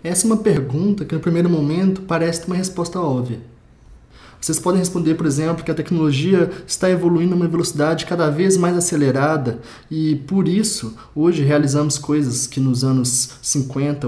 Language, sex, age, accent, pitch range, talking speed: Portuguese, male, 20-39, Brazilian, 130-170 Hz, 170 wpm